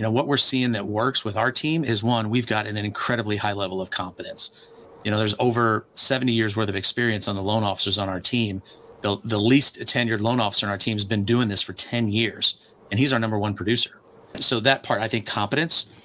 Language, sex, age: English, male, 40-59